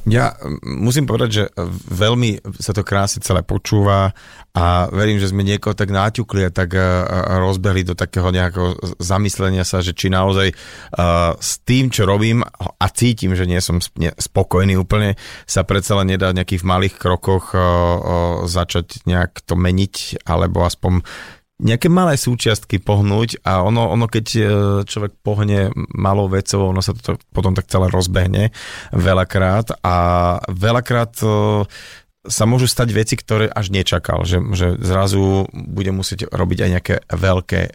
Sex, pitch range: male, 95-110 Hz